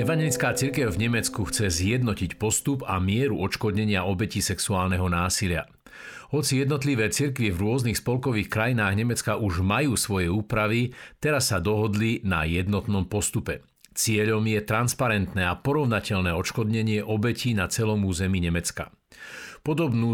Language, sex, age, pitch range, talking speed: Slovak, male, 50-69, 100-120 Hz, 130 wpm